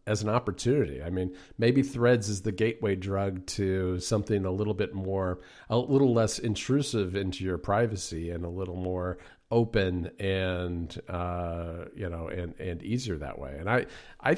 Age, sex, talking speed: 50-69, male, 170 wpm